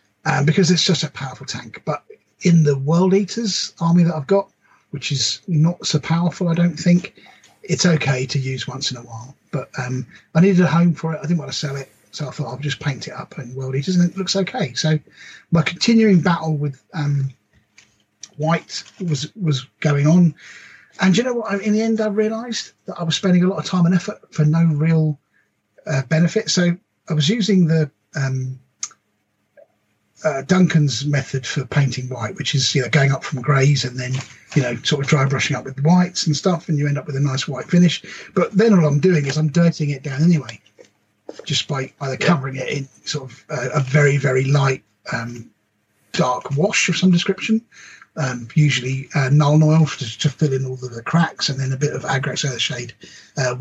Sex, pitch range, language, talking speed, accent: male, 135-175 Hz, English, 215 wpm, British